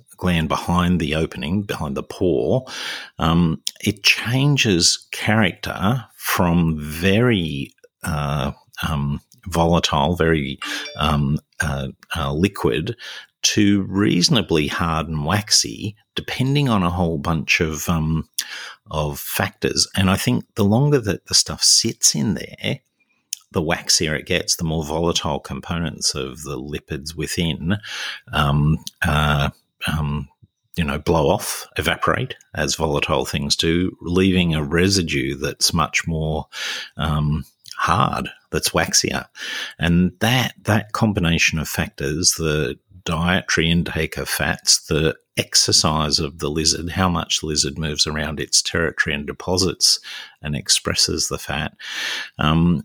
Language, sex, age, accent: English, male, 50-69, Australian